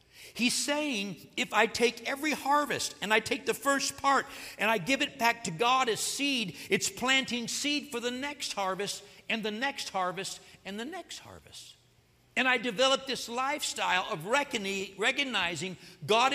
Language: English